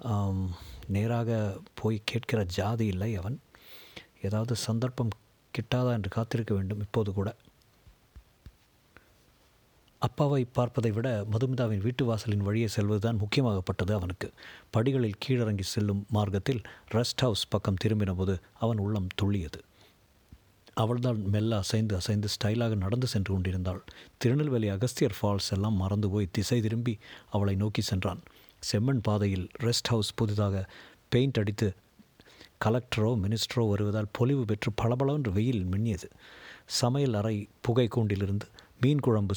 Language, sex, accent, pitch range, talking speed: Tamil, male, native, 100-120 Hz, 115 wpm